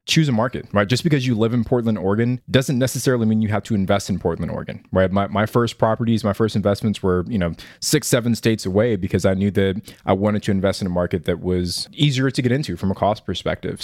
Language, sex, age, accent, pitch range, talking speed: English, male, 20-39, American, 100-120 Hz, 245 wpm